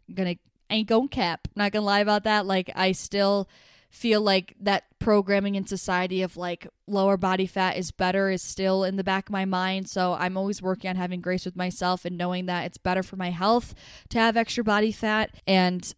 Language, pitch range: English, 185-225 Hz